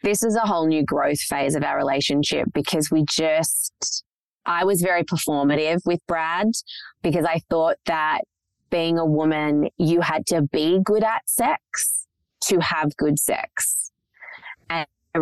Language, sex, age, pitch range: English, female, 20-39, 140-165 Hz